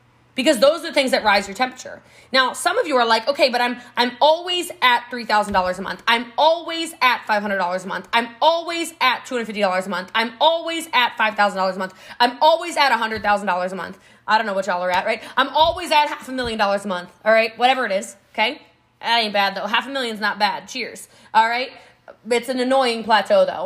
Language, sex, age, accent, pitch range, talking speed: English, female, 20-39, American, 205-310 Hz, 225 wpm